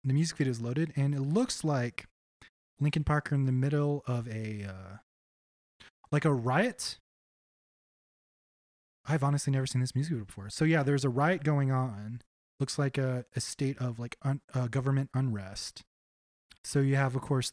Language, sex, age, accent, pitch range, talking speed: English, male, 20-39, American, 125-150 Hz, 175 wpm